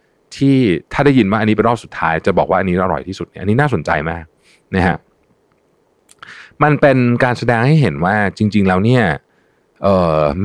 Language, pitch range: Thai, 80-120 Hz